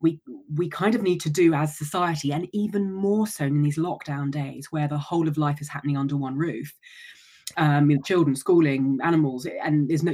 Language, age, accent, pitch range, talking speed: English, 20-39, British, 145-180 Hz, 215 wpm